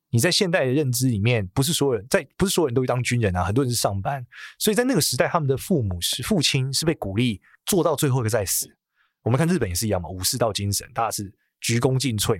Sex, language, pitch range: male, Chinese, 105-140 Hz